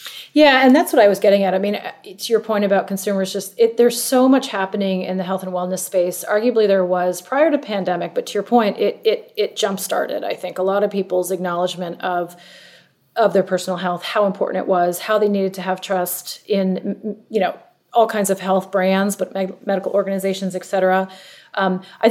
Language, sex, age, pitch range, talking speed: English, female, 30-49, 185-220 Hz, 215 wpm